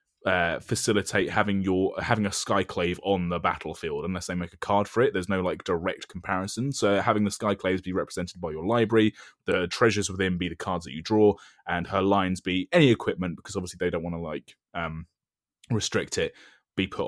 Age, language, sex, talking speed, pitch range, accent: 20-39, English, male, 200 wpm, 90-115 Hz, British